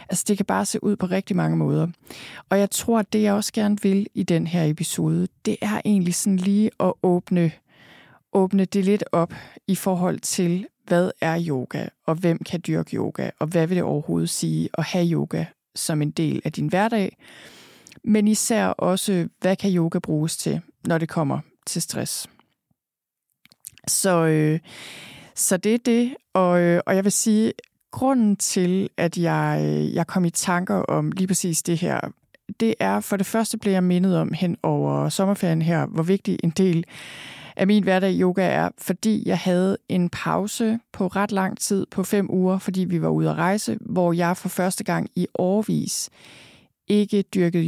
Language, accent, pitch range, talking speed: Danish, native, 165-200 Hz, 185 wpm